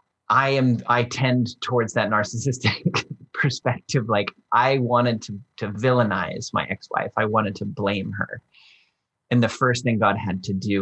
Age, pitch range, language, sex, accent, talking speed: 30-49, 100-125 Hz, English, male, American, 165 wpm